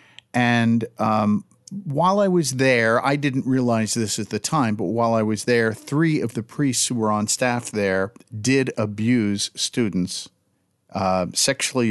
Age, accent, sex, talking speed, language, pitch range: 50-69, American, male, 160 wpm, English, 105-135 Hz